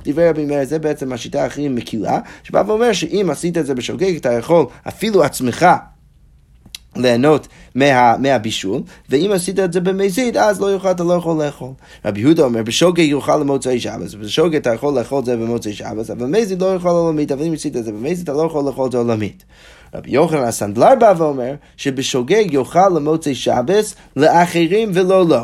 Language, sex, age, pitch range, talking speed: Hebrew, male, 30-49, 120-170 Hz, 185 wpm